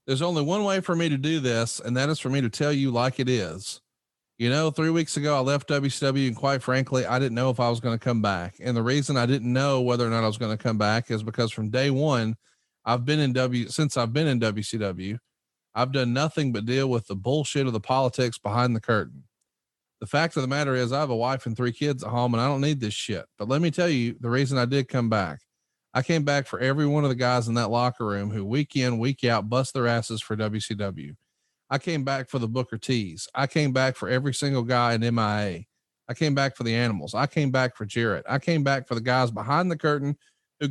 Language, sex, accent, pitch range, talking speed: English, male, American, 115-140 Hz, 260 wpm